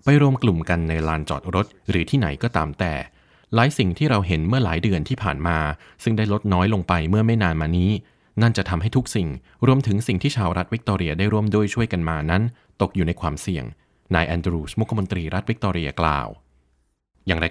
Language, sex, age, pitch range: Thai, male, 20-39, 80-105 Hz